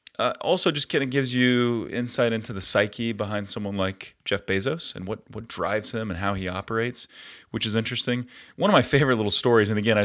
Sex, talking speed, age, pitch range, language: male, 220 wpm, 30-49, 100-120 Hz, English